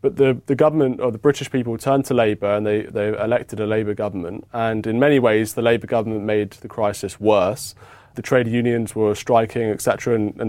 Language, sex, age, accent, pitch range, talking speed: English, male, 30-49, British, 105-135 Hz, 205 wpm